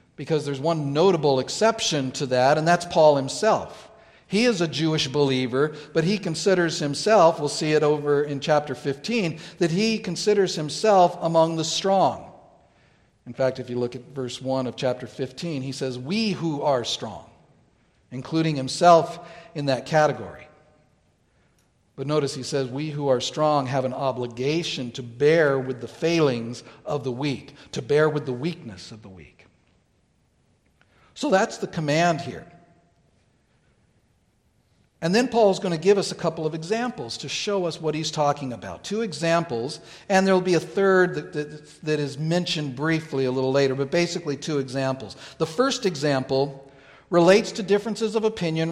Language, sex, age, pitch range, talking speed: English, male, 50-69, 135-175 Hz, 165 wpm